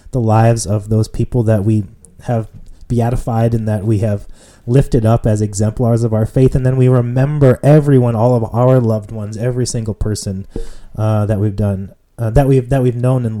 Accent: American